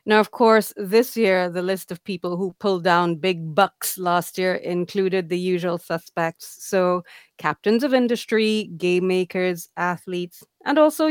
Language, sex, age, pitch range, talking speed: Finnish, female, 30-49, 170-210 Hz, 155 wpm